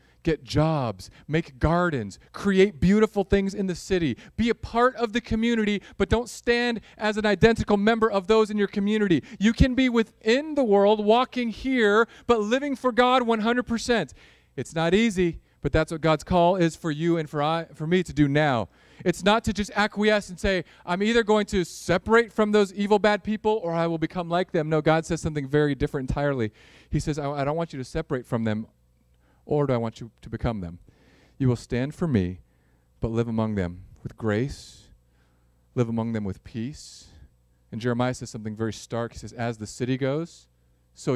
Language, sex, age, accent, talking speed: English, male, 40-59, American, 200 wpm